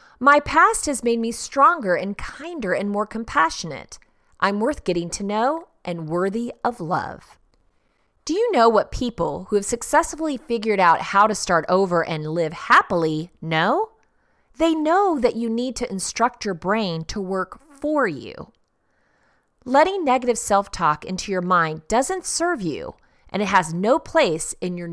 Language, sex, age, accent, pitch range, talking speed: English, female, 30-49, American, 175-270 Hz, 160 wpm